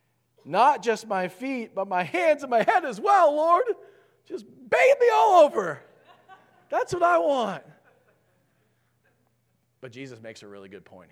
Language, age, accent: English, 40-59, American